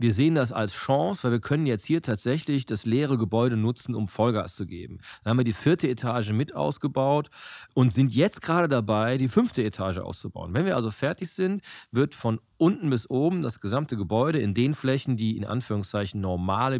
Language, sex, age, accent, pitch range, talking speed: German, male, 40-59, German, 110-135 Hz, 200 wpm